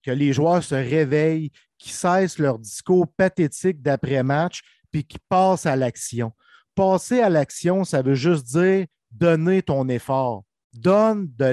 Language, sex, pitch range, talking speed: French, male, 140-185 Hz, 155 wpm